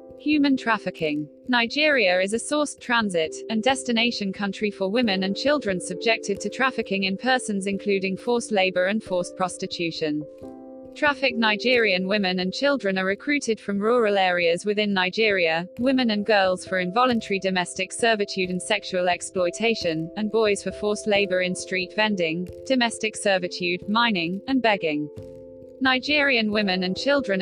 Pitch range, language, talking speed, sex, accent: 185-240 Hz, English, 140 wpm, female, British